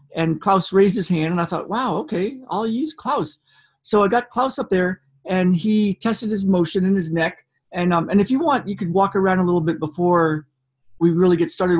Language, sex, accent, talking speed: English, male, American, 230 wpm